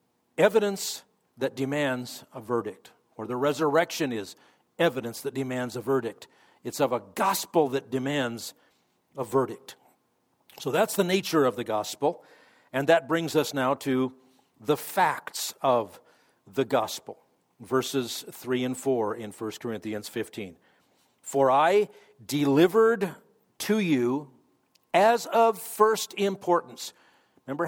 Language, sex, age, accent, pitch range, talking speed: English, male, 50-69, American, 130-185 Hz, 125 wpm